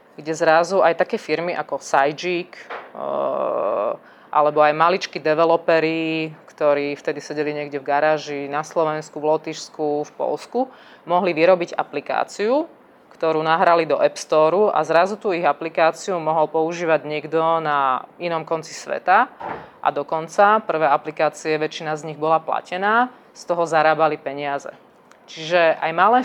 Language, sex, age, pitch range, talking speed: English, female, 20-39, 150-175 Hz, 135 wpm